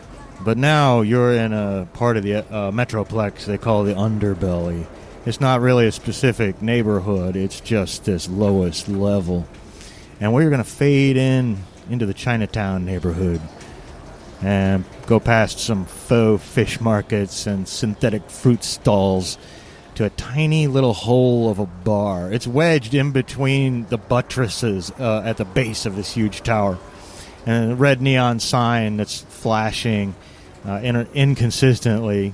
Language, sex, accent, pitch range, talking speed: English, male, American, 100-125 Hz, 145 wpm